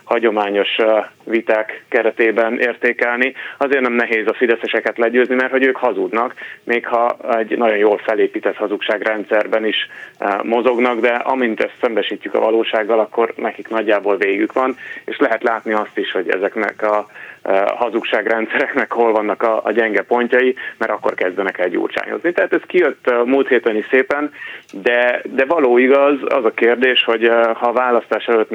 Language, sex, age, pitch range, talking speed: Hungarian, male, 30-49, 110-130 Hz, 155 wpm